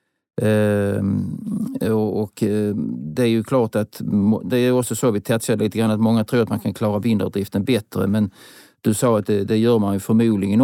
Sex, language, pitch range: male, Swedish, 100-115 Hz